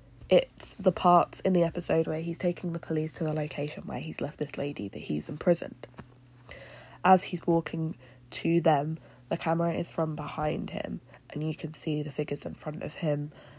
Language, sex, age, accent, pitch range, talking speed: English, female, 20-39, British, 140-170 Hz, 190 wpm